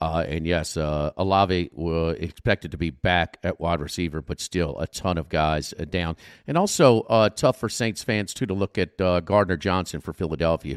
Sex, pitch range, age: male, 85-115 Hz, 50-69